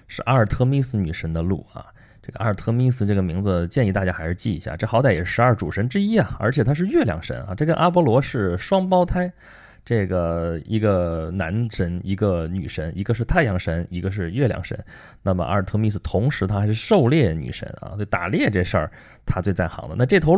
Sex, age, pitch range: male, 20-39, 95-130 Hz